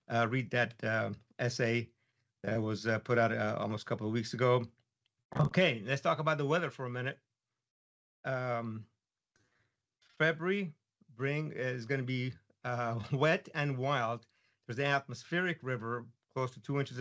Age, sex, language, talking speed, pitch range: 50-69, male, English, 155 wpm, 115-140 Hz